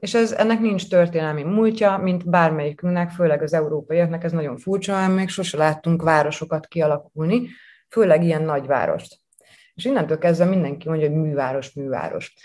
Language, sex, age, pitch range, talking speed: Hungarian, female, 30-49, 150-185 Hz, 145 wpm